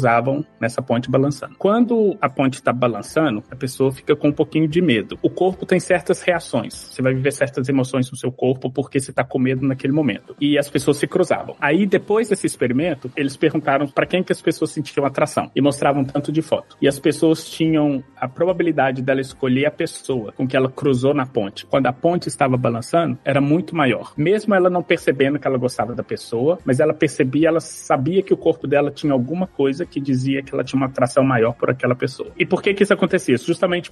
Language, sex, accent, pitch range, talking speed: Portuguese, male, Brazilian, 130-160 Hz, 215 wpm